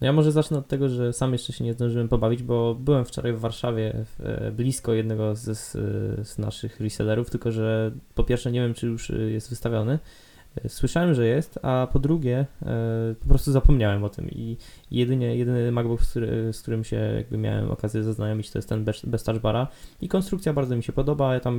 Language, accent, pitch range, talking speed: Polish, native, 110-135 Hz, 190 wpm